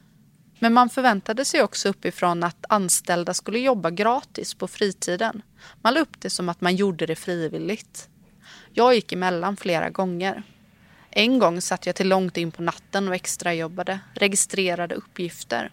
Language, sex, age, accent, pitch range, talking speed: Swedish, female, 30-49, native, 175-225 Hz, 160 wpm